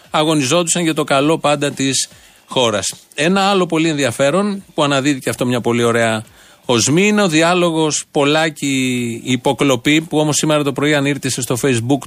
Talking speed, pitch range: 155 wpm, 125-165 Hz